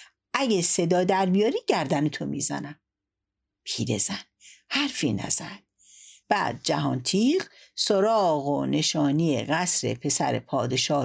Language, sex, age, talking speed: Persian, female, 60-79, 105 wpm